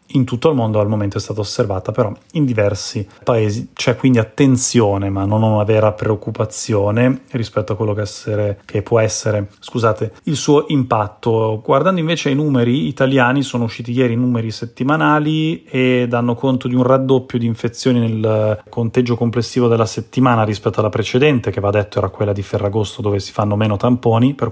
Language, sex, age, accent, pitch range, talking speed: Italian, male, 30-49, native, 110-125 Hz, 180 wpm